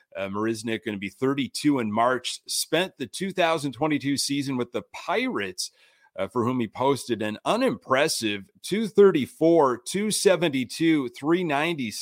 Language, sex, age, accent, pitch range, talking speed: English, male, 30-49, American, 115-155 Hz, 115 wpm